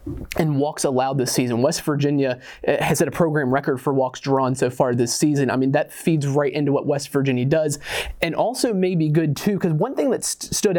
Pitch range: 135-160 Hz